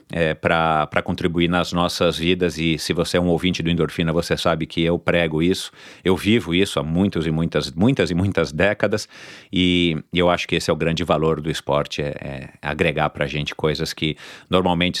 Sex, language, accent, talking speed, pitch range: male, Portuguese, Brazilian, 210 wpm, 85-100 Hz